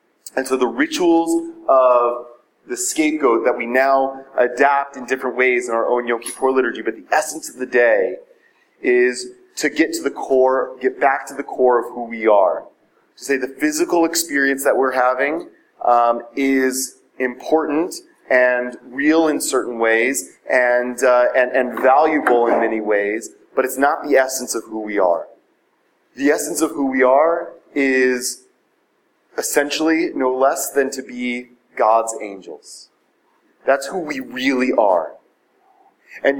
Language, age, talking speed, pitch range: English, 30-49, 155 wpm, 130-190 Hz